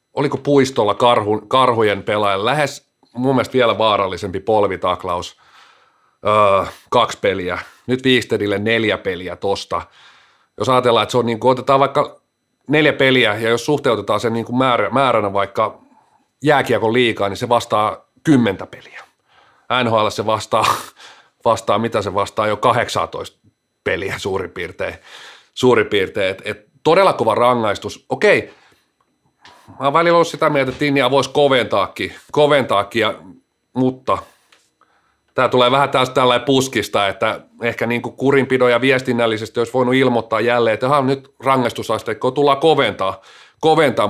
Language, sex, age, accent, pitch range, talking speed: Finnish, male, 40-59, native, 115-135 Hz, 135 wpm